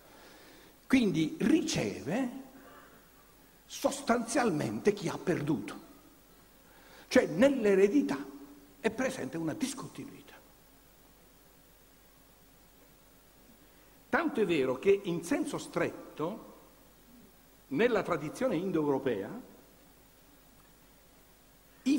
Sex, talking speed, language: male, 65 wpm, Italian